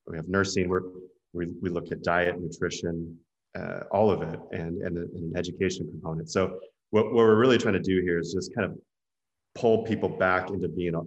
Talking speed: 205 wpm